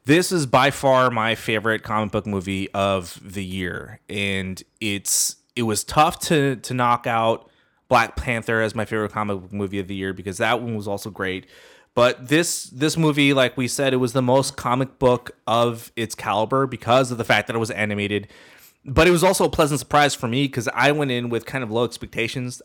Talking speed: 210 wpm